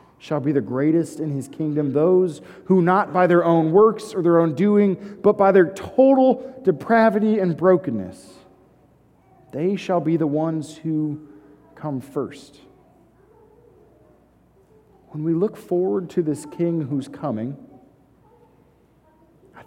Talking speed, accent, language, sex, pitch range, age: 130 wpm, American, English, male, 140-185 Hz, 40-59